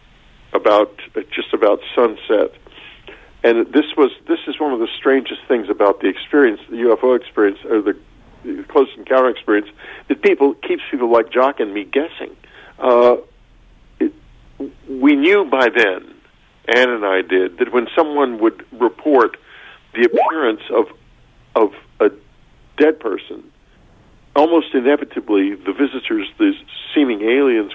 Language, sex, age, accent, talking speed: English, male, 50-69, American, 140 wpm